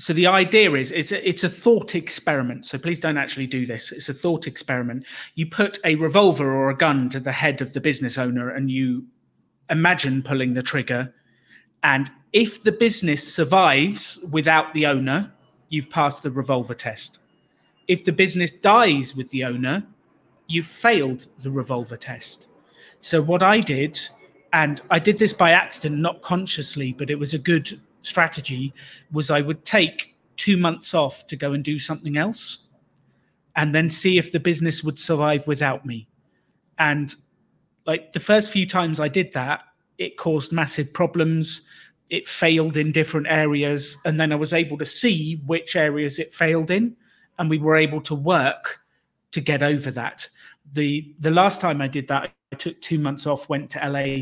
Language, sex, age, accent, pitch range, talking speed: English, male, 30-49, British, 140-170 Hz, 175 wpm